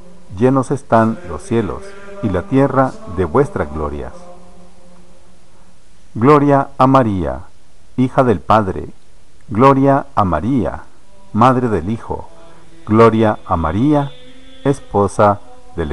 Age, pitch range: 50-69, 110-165 Hz